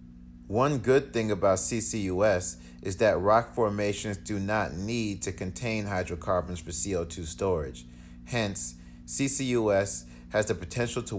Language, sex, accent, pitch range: English, male, American, 85-105 Hz